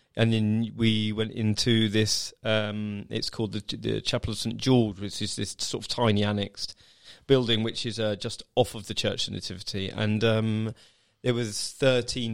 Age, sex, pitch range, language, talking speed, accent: 30-49, male, 105-120 Hz, English, 185 wpm, British